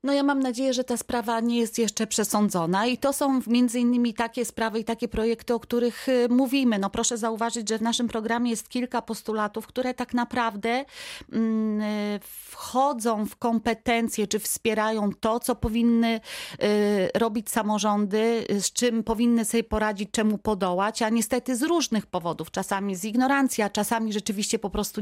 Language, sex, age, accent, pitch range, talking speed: Polish, female, 30-49, native, 200-235 Hz, 160 wpm